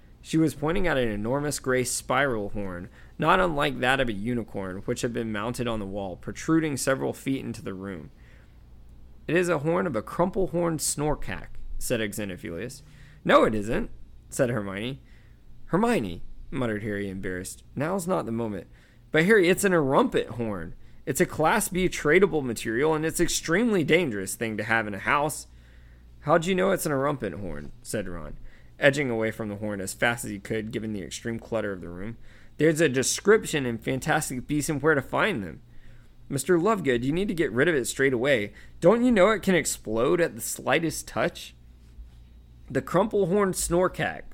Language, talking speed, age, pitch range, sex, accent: English, 185 wpm, 20-39, 100-160 Hz, male, American